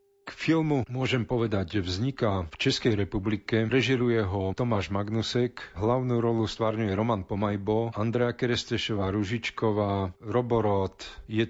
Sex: male